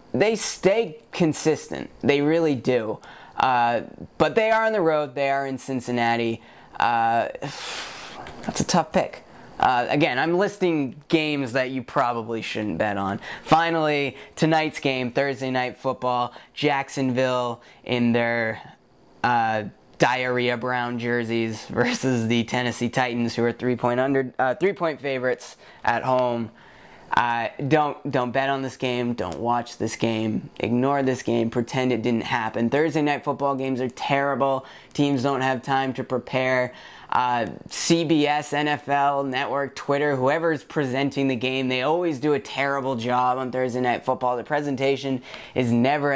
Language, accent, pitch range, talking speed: English, American, 120-145 Hz, 145 wpm